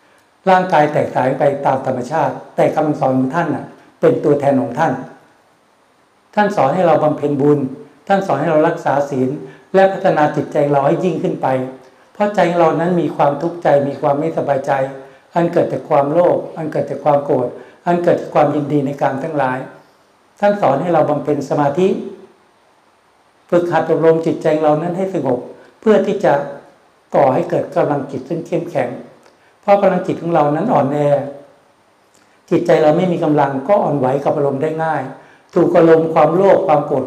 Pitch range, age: 140-175 Hz, 60-79